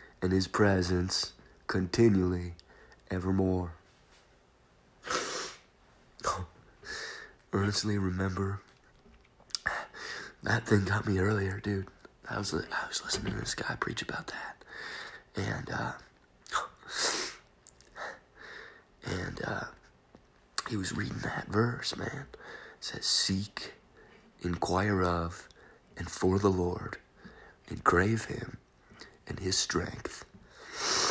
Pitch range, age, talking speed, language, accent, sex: 90-105 Hz, 40-59, 95 wpm, English, American, male